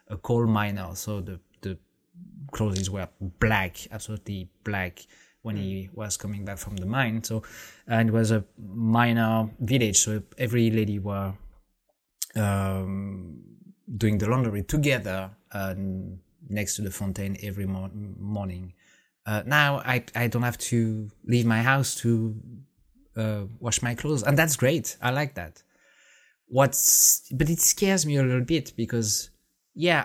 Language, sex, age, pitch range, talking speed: English, male, 20-39, 100-130 Hz, 150 wpm